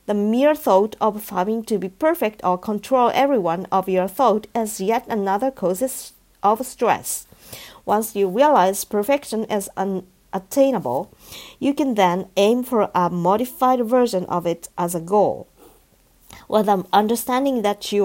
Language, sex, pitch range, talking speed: English, female, 190-245 Hz, 145 wpm